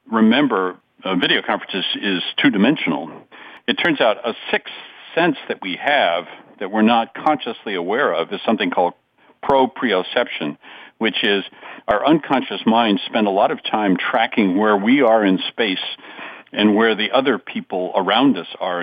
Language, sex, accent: English, male, American